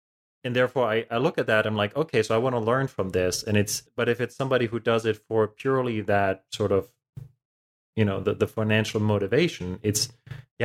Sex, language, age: male, English, 20-39